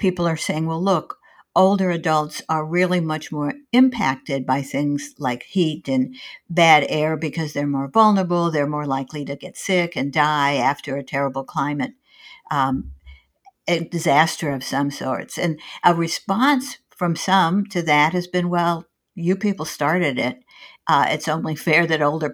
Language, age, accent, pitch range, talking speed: English, 60-79, American, 150-195 Hz, 165 wpm